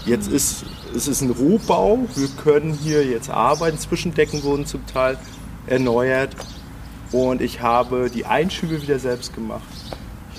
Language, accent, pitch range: German, German, 100-155 Hz